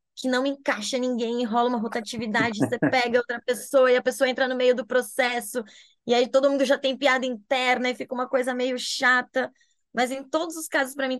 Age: 20-39